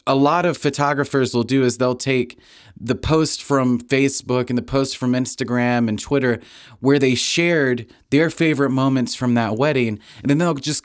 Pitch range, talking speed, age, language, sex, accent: 120-155 Hz, 185 wpm, 30-49, English, male, American